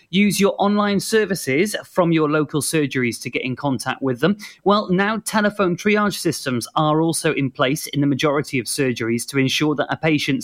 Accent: British